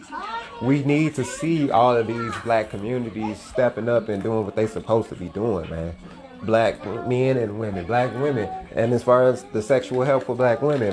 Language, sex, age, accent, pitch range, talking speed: English, male, 30-49, American, 110-170 Hz, 200 wpm